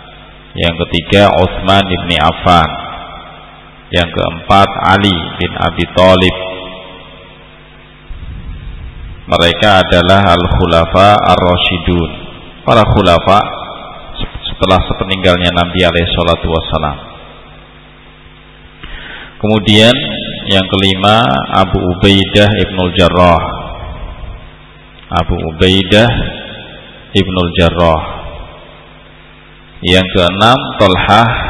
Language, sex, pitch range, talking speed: Indonesian, male, 85-100 Hz, 70 wpm